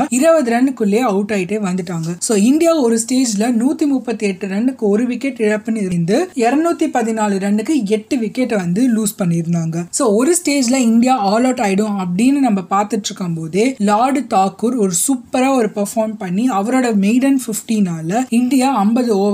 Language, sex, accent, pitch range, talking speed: Tamil, female, native, 200-250 Hz, 30 wpm